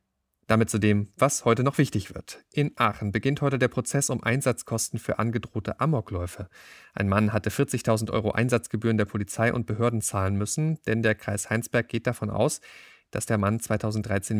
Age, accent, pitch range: 40-59, German, 105-125 Hz